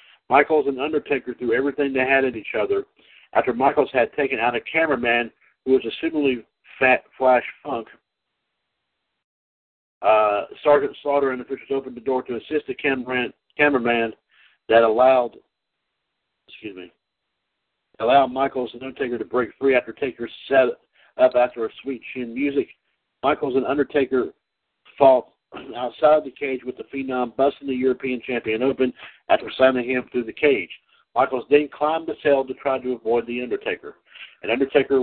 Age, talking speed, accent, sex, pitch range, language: 60-79, 160 wpm, American, male, 125-140 Hz, English